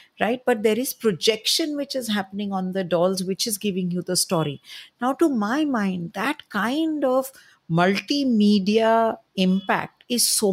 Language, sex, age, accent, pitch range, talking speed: English, female, 50-69, Indian, 175-230 Hz, 160 wpm